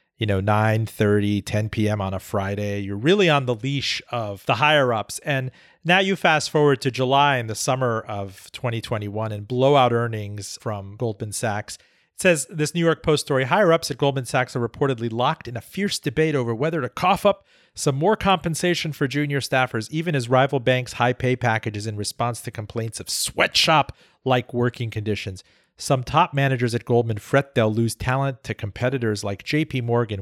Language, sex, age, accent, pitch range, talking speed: English, male, 40-59, American, 110-150 Hz, 180 wpm